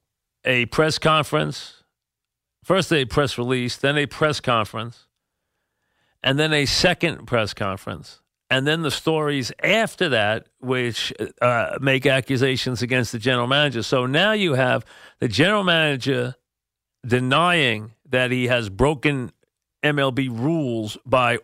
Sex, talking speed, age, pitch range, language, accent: male, 130 wpm, 40-59, 120-145 Hz, English, American